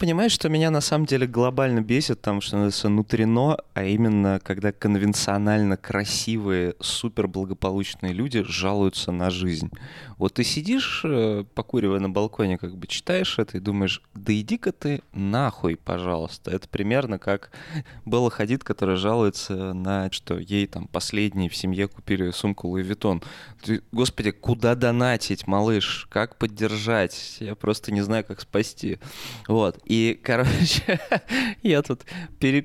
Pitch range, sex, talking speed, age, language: 95-115 Hz, male, 135 wpm, 20-39, Russian